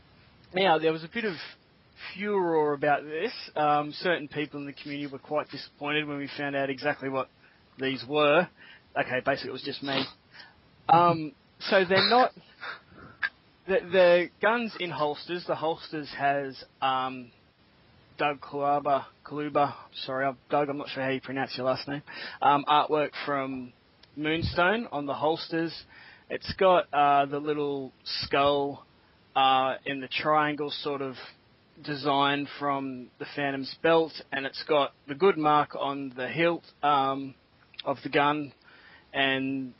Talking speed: 145 wpm